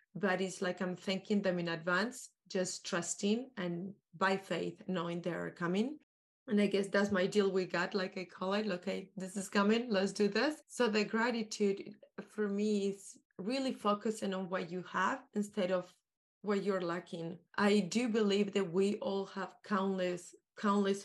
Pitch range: 185-215 Hz